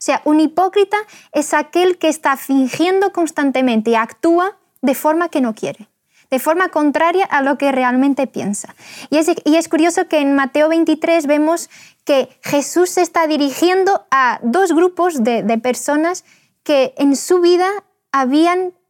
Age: 20-39